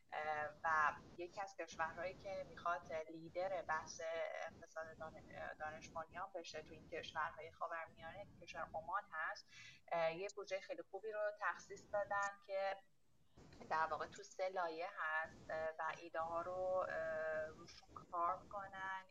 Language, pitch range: Persian, 155-190 Hz